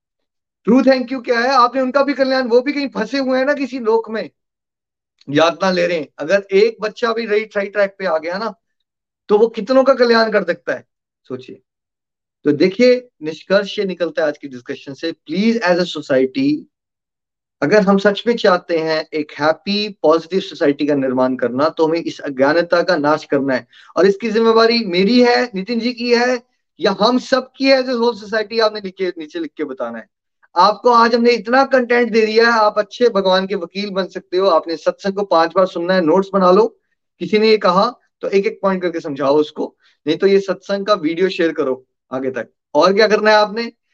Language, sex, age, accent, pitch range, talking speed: Hindi, male, 30-49, native, 165-230 Hz, 205 wpm